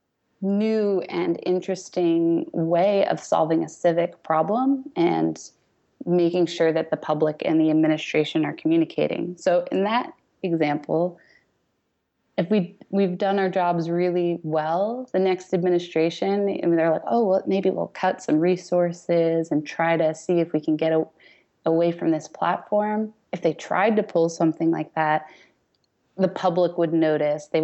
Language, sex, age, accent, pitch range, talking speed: English, female, 20-39, American, 155-180 Hz, 160 wpm